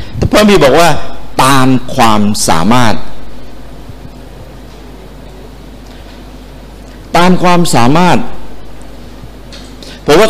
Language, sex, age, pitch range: Thai, male, 60-79, 115-155 Hz